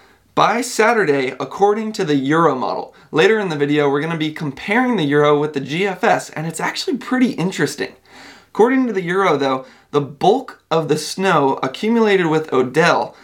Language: English